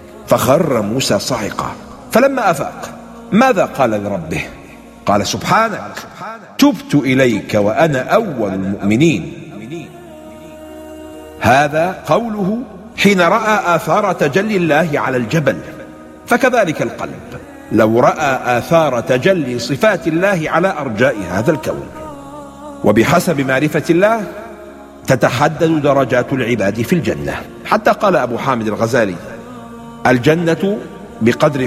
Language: English